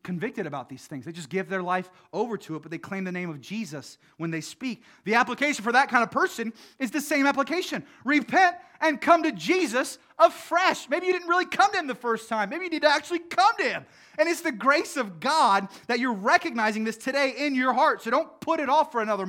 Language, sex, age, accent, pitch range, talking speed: English, male, 30-49, American, 180-275 Hz, 245 wpm